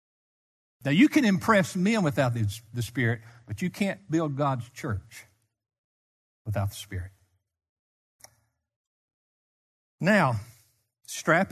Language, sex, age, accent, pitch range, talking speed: English, male, 60-79, American, 110-185 Hz, 100 wpm